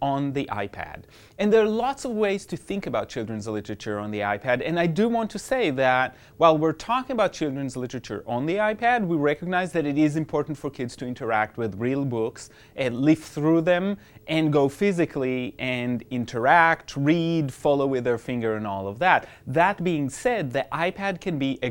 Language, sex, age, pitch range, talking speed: English, male, 30-49, 125-175 Hz, 200 wpm